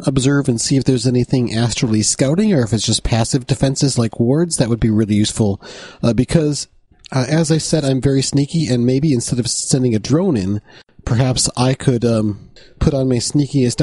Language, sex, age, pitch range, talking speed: English, male, 40-59, 115-140 Hz, 200 wpm